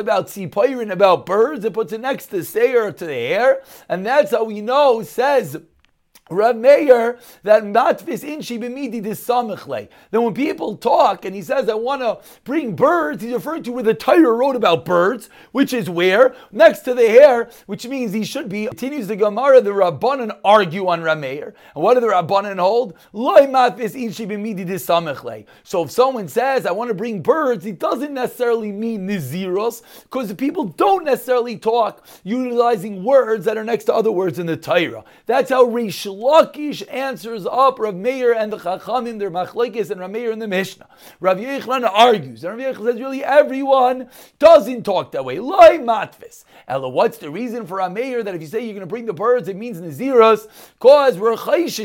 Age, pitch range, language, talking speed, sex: 40-59, 205-260 Hz, English, 185 wpm, male